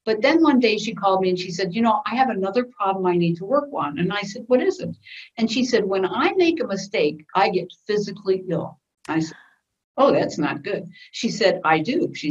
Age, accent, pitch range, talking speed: 60-79, American, 175-255 Hz, 245 wpm